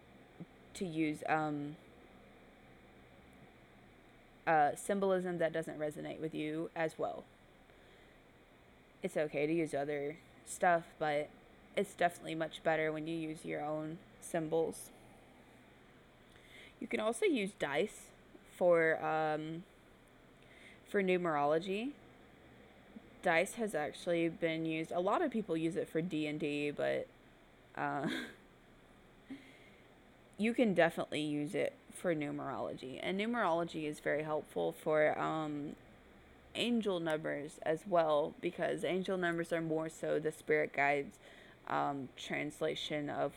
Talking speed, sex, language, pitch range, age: 115 wpm, female, English, 145-170 Hz, 20-39